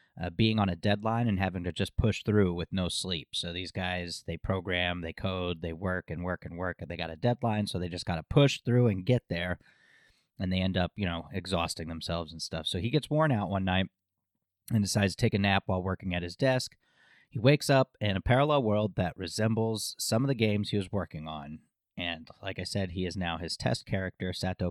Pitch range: 90-110 Hz